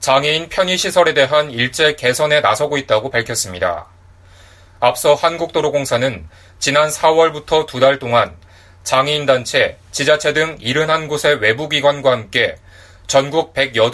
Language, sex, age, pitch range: Korean, male, 30-49, 95-150 Hz